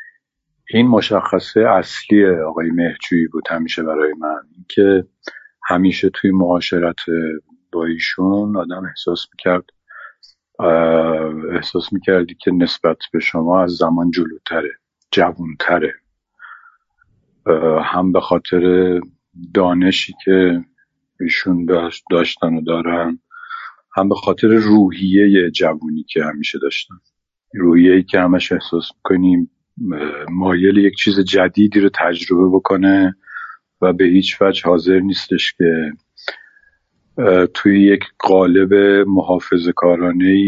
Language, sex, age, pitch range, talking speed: Persian, male, 50-69, 85-100 Hz, 105 wpm